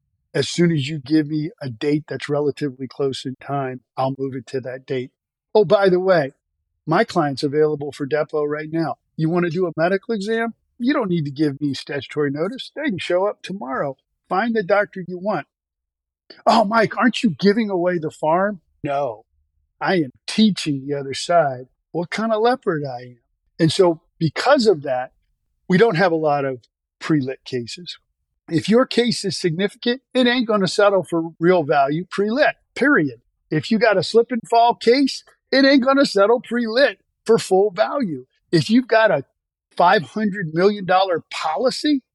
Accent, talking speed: American, 180 wpm